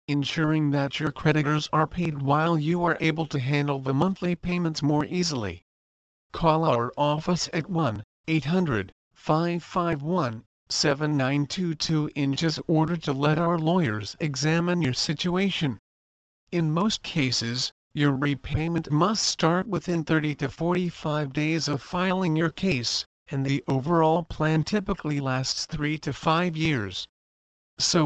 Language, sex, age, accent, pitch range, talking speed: English, male, 50-69, American, 140-170 Hz, 125 wpm